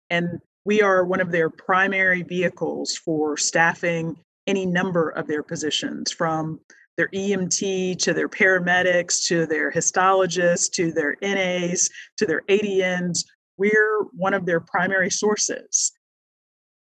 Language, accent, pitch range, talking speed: English, American, 165-190 Hz, 130 wpm